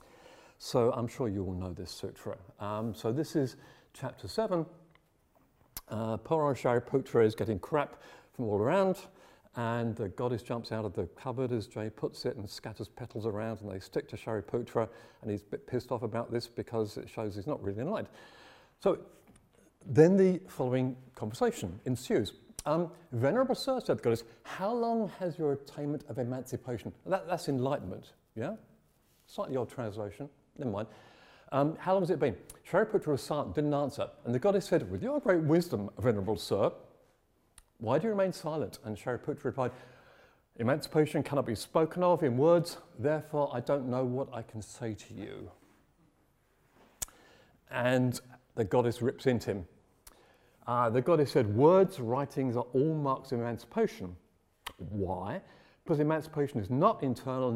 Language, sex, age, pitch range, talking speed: English, male, 50-69, 115-155 Hz, 160 wpm